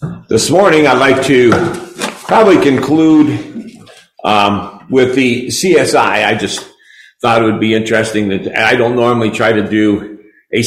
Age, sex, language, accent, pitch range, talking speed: 50-69, male, English, American, 130-185 Hz, 145 wpm